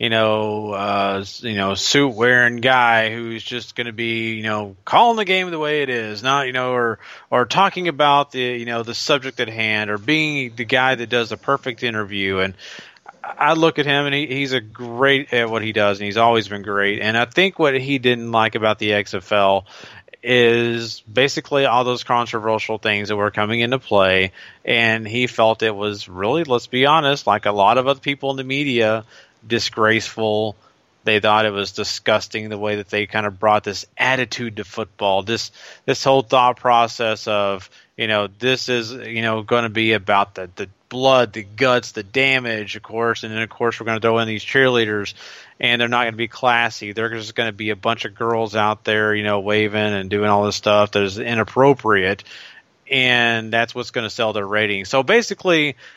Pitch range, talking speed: 105-125 Hz, 210 wpm